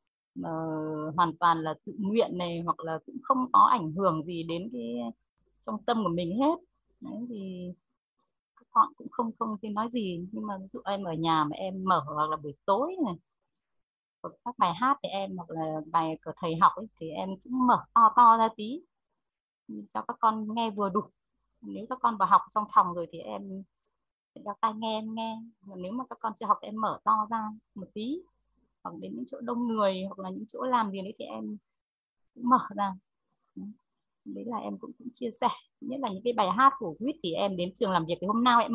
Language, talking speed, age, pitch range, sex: Vietnamese, 225 wpm, 20-39, 190-245 Hz, female